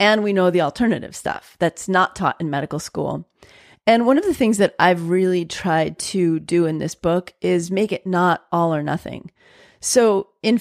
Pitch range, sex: 175-215 Hz, female